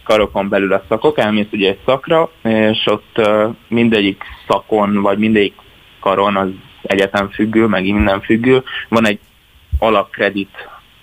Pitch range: 100-115 Hz